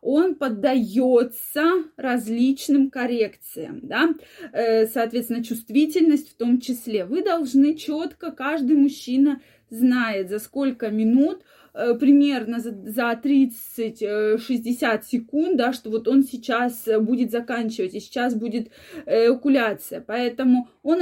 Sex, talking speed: female, 105 wpm